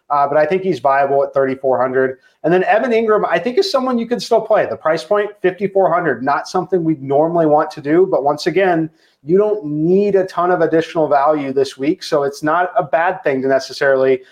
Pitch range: 135-180 Hz